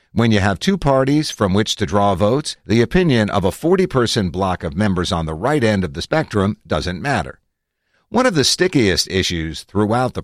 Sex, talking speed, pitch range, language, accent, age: male, 200 wpm, 90-120 Hz, English, American, 50-69